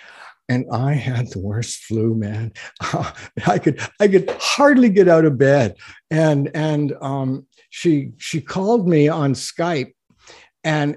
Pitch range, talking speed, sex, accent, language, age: 130-170 Hz, 140 wpm, male, American, English, 60-79